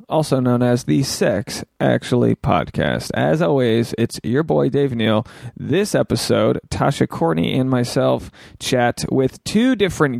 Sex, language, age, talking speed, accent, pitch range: male, English, 30-49, 140 wpm, American, 120-145 Hz